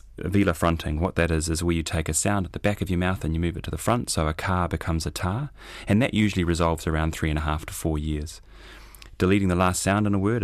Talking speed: 280 wpm